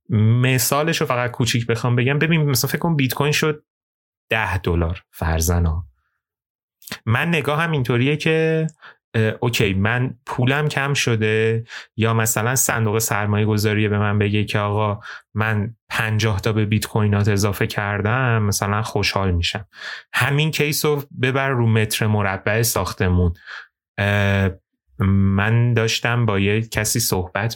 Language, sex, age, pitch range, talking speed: Persian, male, 30-49, 100-125 Hz, 125 wpm